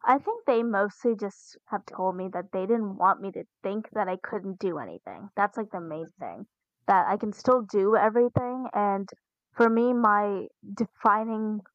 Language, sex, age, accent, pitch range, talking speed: English, female, 20-39, American, 190-225 Hz, 185 wpm